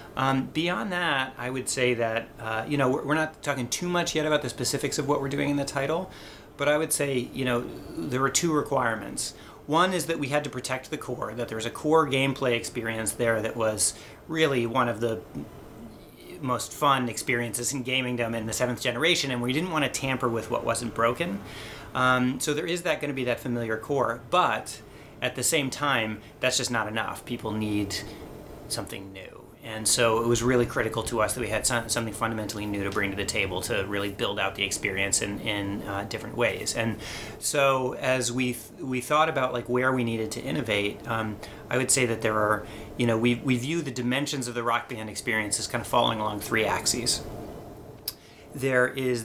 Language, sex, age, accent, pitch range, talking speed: English, male, 30-49, American, 110-140 Hz, 210 wpm